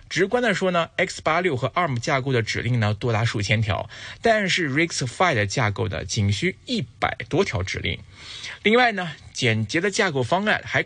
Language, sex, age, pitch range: Chinese, male, 20-39, 105-170 Hz